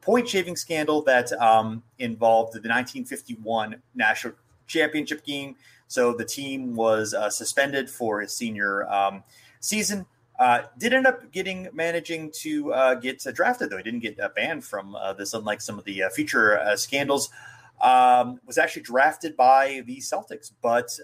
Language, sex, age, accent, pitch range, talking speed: English, male, 30-49, American, 115-145 Hz, 160 wpm